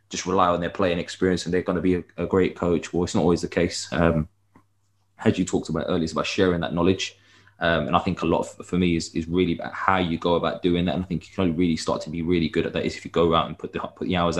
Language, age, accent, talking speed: English, 20-39, British, 315 wpm